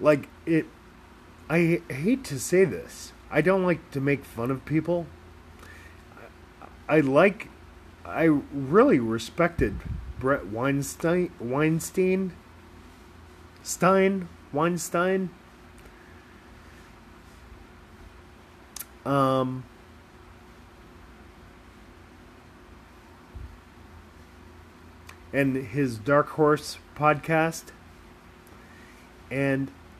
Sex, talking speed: male, 65 wpm